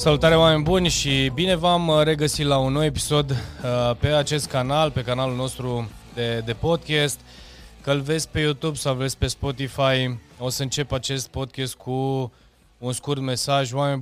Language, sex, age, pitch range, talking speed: Romanian, male, 20-39, 110-135 Hz, 165 wpm